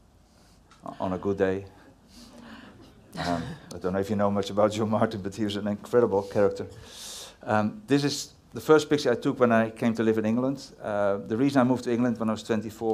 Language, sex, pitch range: English, male, 95-110 Hz